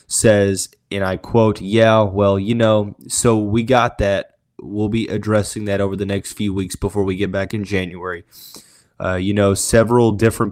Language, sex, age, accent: English, male, 20-39, American